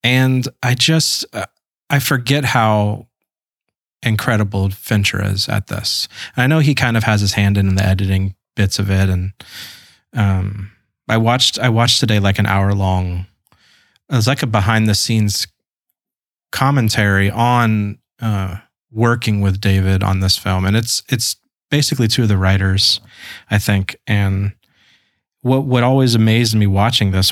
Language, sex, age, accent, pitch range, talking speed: English, male, 30-49, American, 100-120 Hz, 155 wpm